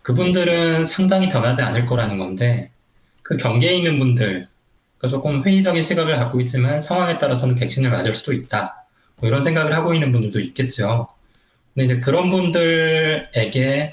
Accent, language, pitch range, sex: native, Korean, 115-145 Hz, male